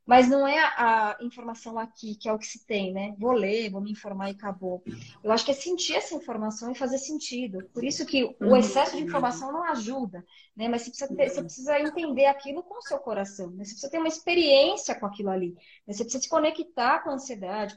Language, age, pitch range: Portuguese, 20-39, 215-290 Hz